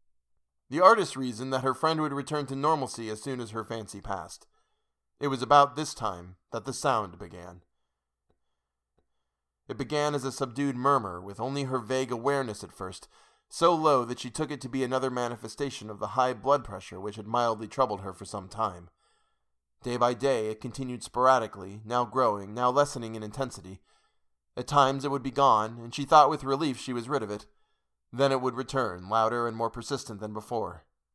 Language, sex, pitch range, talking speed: English, male, 105-145 Hz, 190 wpm